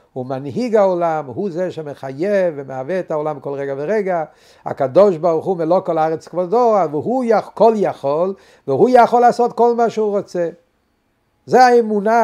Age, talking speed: 60-79, 155 wpm